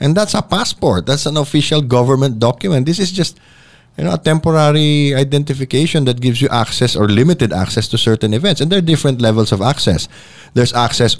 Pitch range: 110-155 Hz